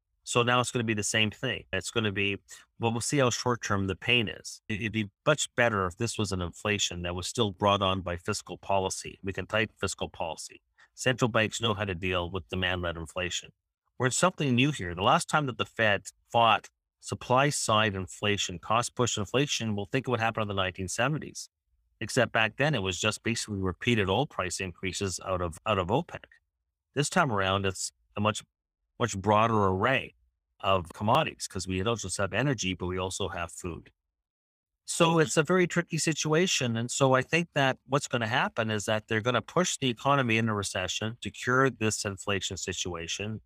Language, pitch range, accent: English, 95-120 Hz, American